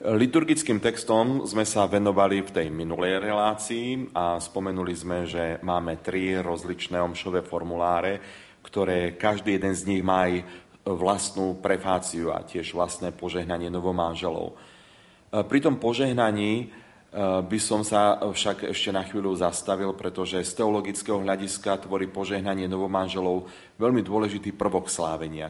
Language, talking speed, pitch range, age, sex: Slovak, 125 wpm, 90-105 Hz, 30-49, male